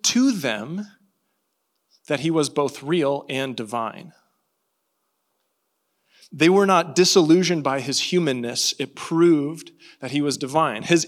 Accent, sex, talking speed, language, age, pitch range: American, male, 125 wpm, English, 30-49, 145-190 Hz